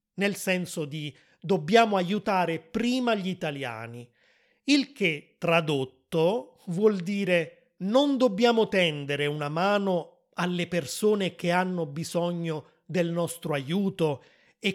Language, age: Italian, 30-49